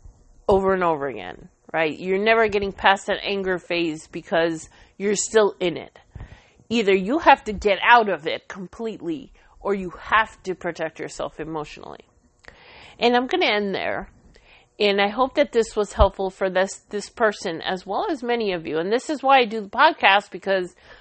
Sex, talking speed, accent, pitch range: female, 185 wpm, American, 170-210 Hz